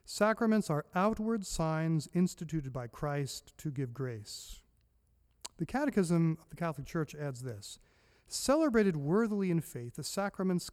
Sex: male